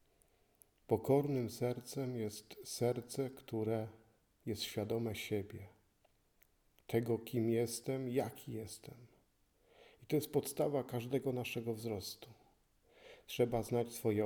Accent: native